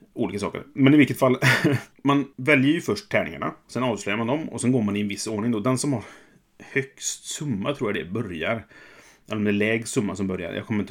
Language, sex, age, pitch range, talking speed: Swedish, male, 30-49, 100-130 Hz, 230 wpm